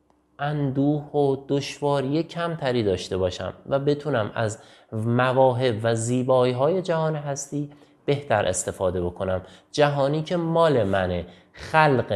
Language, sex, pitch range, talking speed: Persian, male, 105-145 Hz, 115 wpm